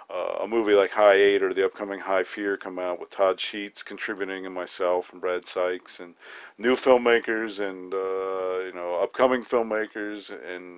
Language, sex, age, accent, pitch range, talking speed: English, male, 40-59, American, 95-125 Hz, 180 wpm